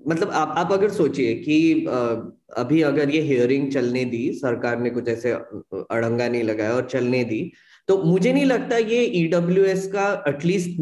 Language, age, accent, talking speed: Hindi, 20-39, native, 155 wpm